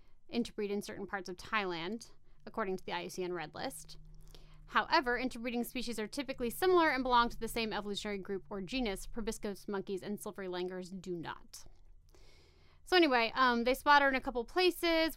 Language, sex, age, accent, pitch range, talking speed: English, female, 30-49, American, 200-250 Hz, 175 wpm